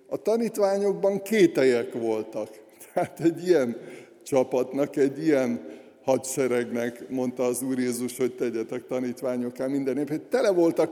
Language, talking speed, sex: Hungarian, 120 wpm, male